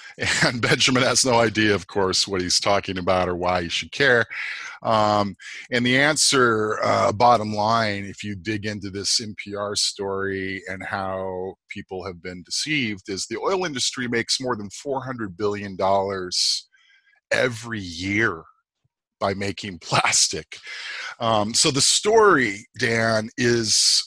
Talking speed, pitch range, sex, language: 140 wpm, 95-115 Hz, male, English